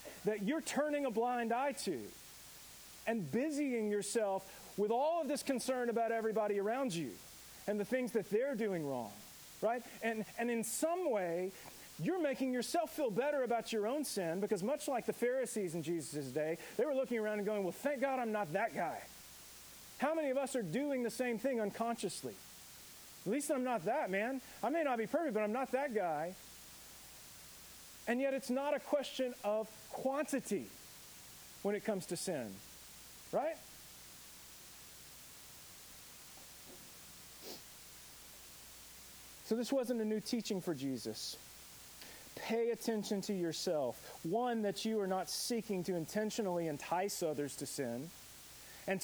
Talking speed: 155 wpm